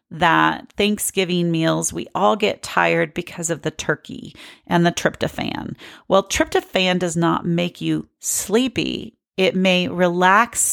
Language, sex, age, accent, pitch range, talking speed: English, female, 40-59, American, 170-200 Hz, 135 wpm